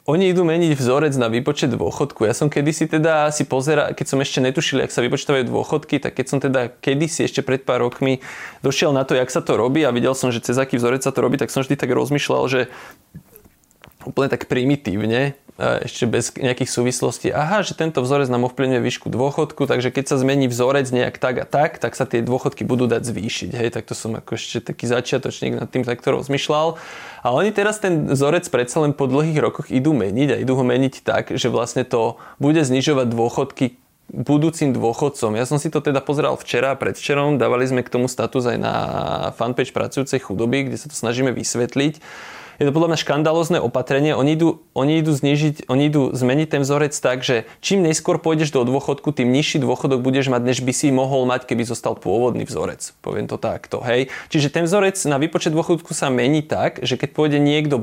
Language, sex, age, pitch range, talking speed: Slovak, male, 20-39, 125-155 Hz, 210 wpm